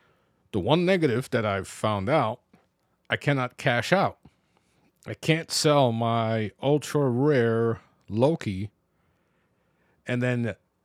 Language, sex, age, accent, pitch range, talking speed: English, male, 50-69, American, 105-140 Hz, 110 wpm